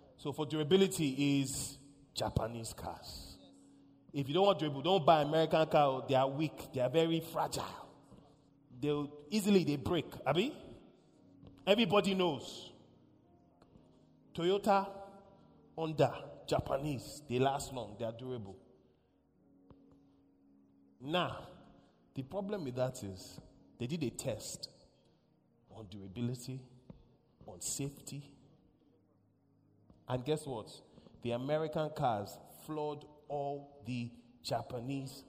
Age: 30-49